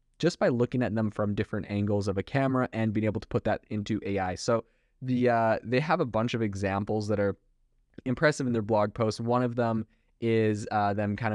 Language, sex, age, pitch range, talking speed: English, male, 20-39, 100-125 Hz, 220 wpm